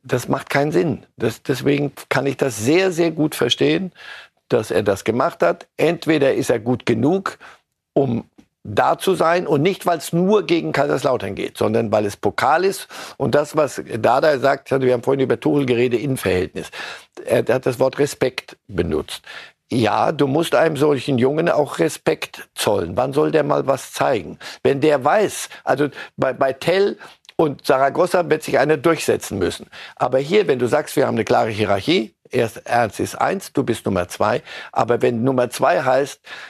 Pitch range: 120-160 Hz